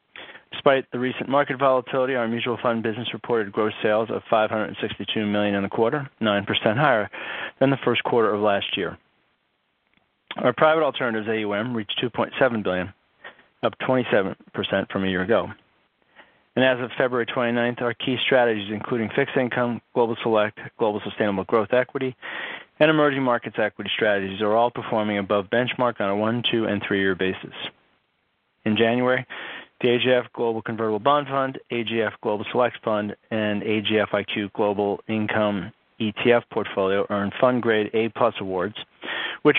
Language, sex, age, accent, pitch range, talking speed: English, male, 40-59, American, 105-125 Hz, 150 wpm